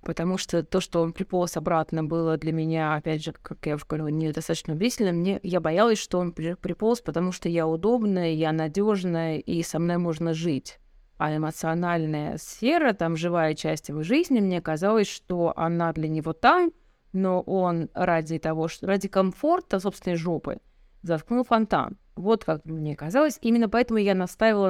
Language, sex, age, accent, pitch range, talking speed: Russian, female, 20-39, native, 160-215 Hz, 165 wpm